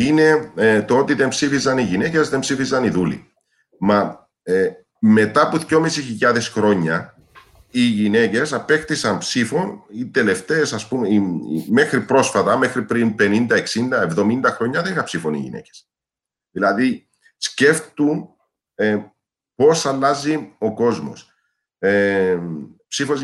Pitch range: 100-155 Hz